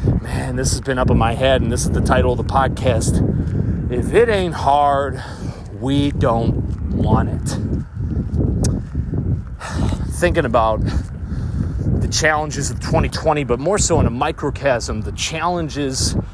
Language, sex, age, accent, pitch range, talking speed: English, male, 40-59, American, 95-140 Hz, 140 wpm